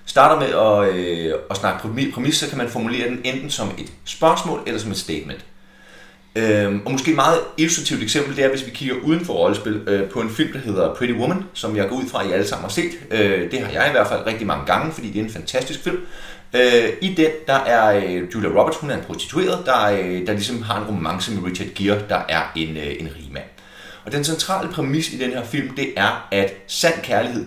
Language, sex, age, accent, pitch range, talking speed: Danish, male, 30-49, native, 100-145 Hz, 245 wpm